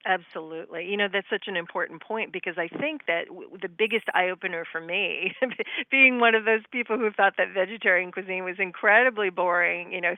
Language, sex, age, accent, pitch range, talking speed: English, female, 40-59, American, 165-195 Hz, 200 wpm